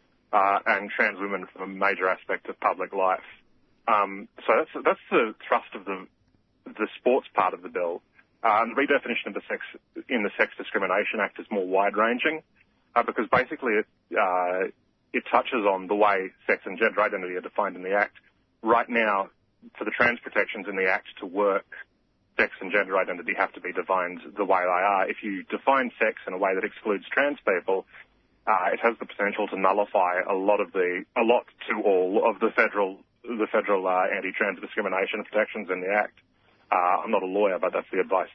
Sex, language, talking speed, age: male, English, 200 wpm, 30-49